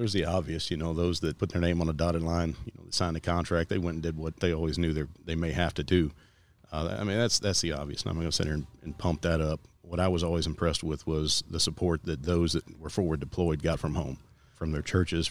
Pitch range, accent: 80-90 Hz, American